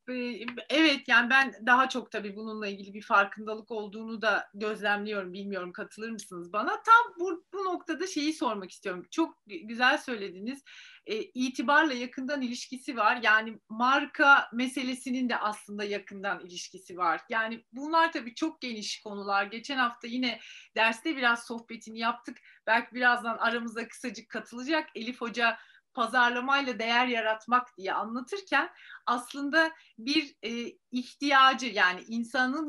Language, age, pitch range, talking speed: Turkish, 30-49, 220-275 Hz, 130 wpm